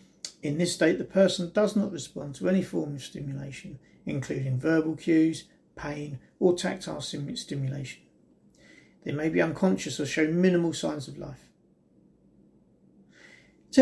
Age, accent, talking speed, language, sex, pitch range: 40-59, British, 135 wpm, English, male, 150-200 Hz